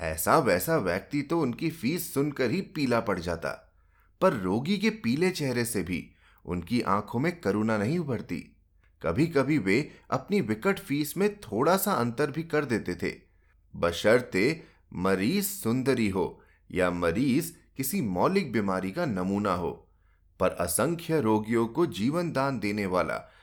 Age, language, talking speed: 30-49, Hindi, 150 wpm